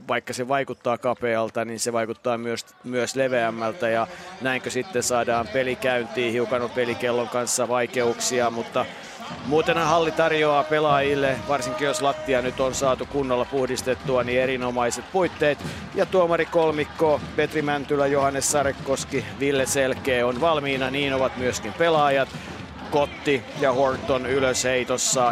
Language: Finnish